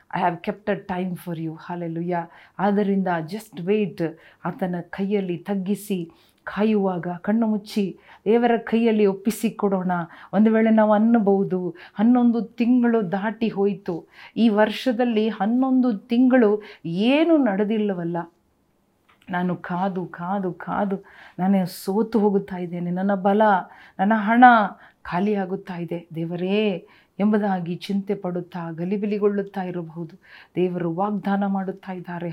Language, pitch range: Kannada, 180-220 Hz